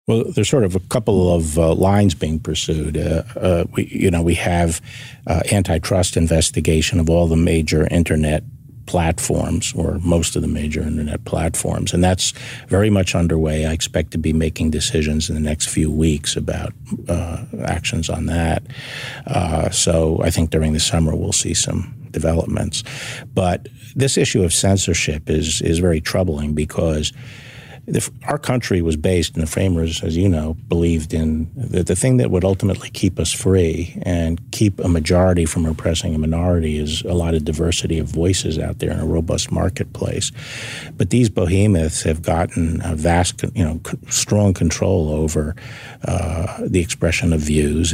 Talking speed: 170 wpm